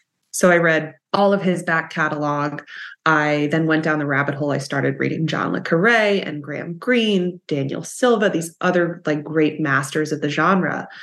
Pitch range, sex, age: 150-180 Hz, female, 20-39